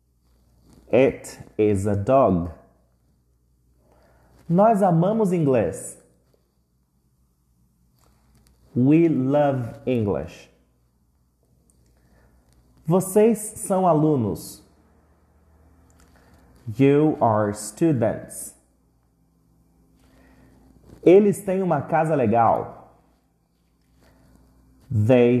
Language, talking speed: English, 50 wpm